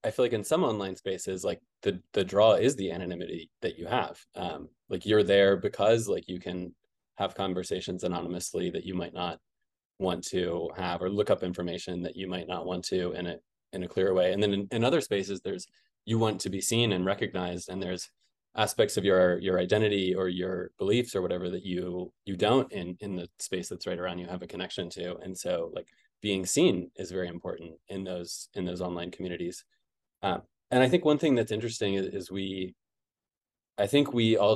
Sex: male